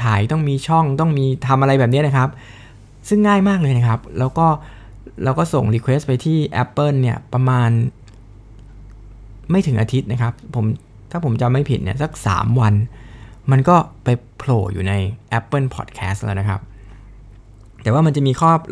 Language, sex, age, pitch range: Thai, male, 20-39, 110-130 Hz